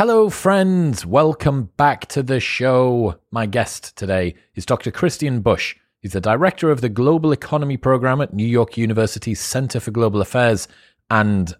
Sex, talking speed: male, 160 wpm